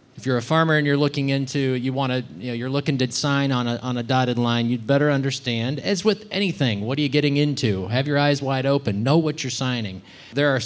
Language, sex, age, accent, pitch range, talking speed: English, male, 30-49, American, 125-150 Hz, 250 wpm